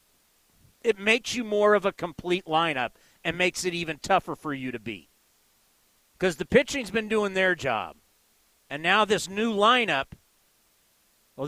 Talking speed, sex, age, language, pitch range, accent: 155 wpm, male, 40-59, English, 180-225 Hz, American